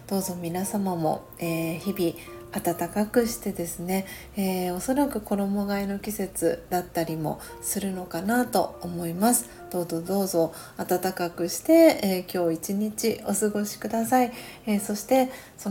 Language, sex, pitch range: Japanese, female, 175-215 Hz